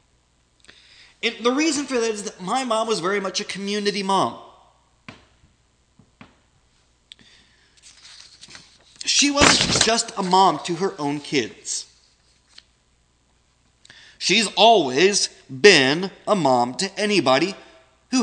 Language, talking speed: English, 100 wpm